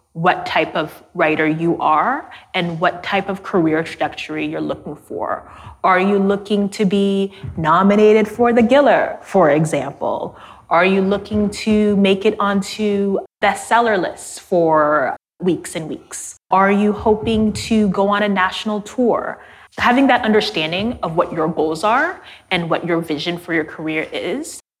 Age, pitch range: 20-39, 160-205 Hz